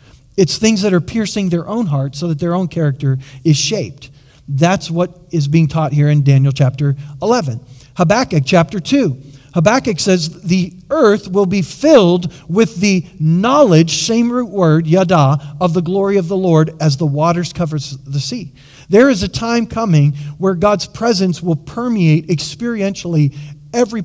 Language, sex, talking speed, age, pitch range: English, male, 165 wpm, 40-59, 140-195 Hz